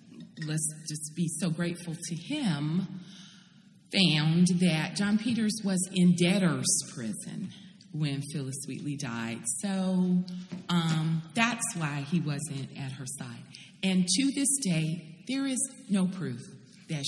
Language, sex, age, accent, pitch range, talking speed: English, female, 40-59, American, 145-195 Hz, 130 wpm